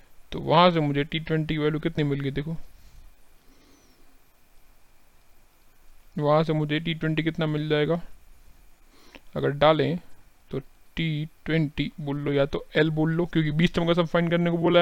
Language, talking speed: Hindi, 160 wpm